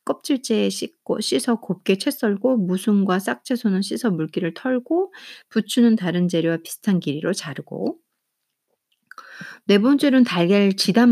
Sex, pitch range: female, 170-255 Hz